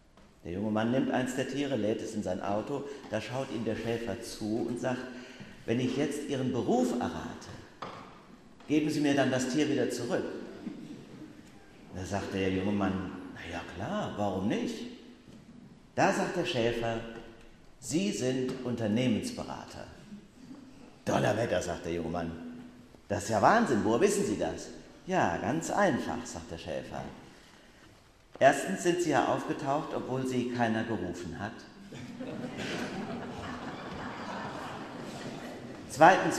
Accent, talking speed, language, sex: German, 135 wpm, German, male